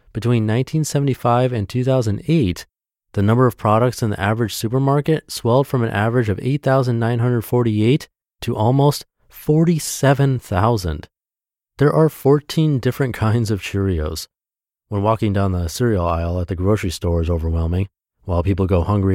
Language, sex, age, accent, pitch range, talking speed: English, male, 30-49, American, 90-120 Hz, 140 wpm